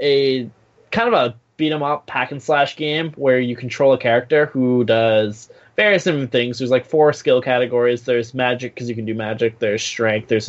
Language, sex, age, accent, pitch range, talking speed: English, male, 20-39, American, 110-130 Hz, 185 wpm